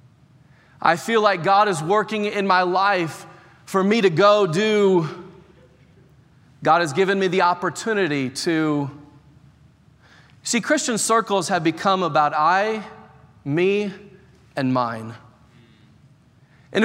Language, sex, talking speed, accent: English, male, 115 wpm, American